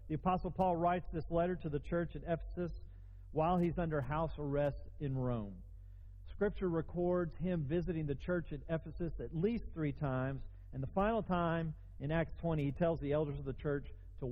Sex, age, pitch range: male, 40-59, 120-170 Hz